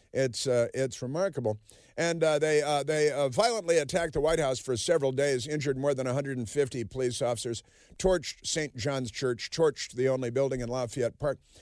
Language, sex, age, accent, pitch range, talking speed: English, male, 50-69, American, 115-150 Hz, 180 wpm